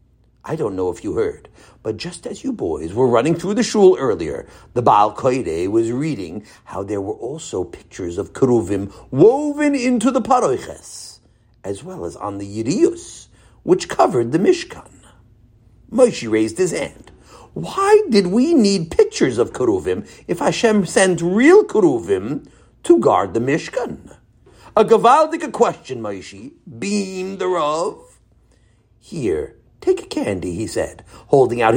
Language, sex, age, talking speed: English, male, 60-79, 145 wpm